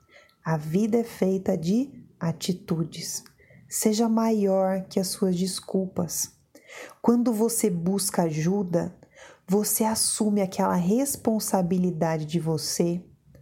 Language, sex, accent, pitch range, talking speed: Portuguese, female, Brazilian, 175-225 Hz, 100 wpm